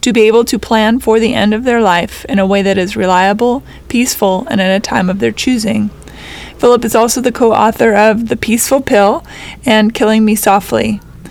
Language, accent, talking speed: English, American, 200 wpm